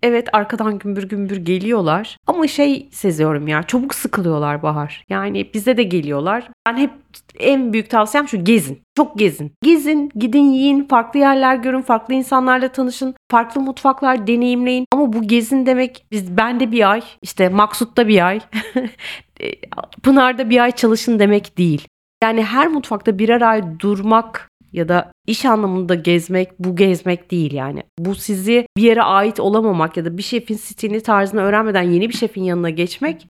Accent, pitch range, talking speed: native, 195-245 Hz, 160 wpm